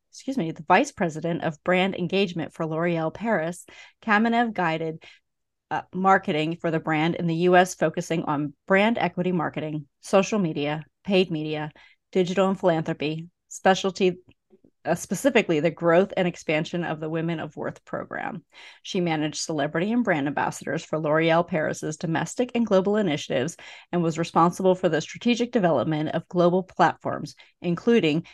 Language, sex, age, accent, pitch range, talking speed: English, female, 30-49, American, 160-190 Hz, 150 wpm